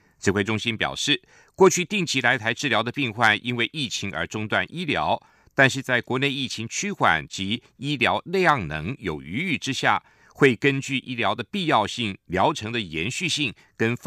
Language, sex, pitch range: German, male, 105-140 Hz